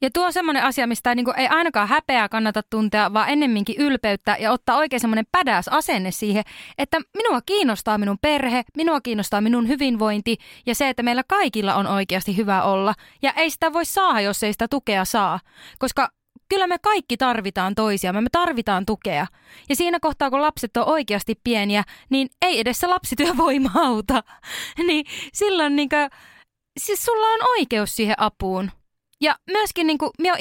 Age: 20-39